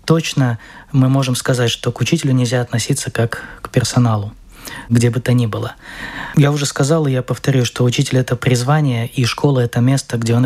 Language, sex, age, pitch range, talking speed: Russian, male, 20-39, 120-135 Hz, 190 wpm